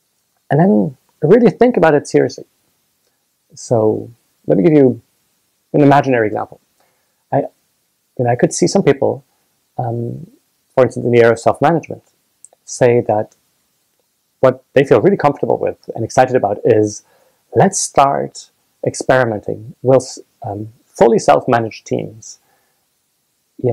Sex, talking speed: male, 130 wpm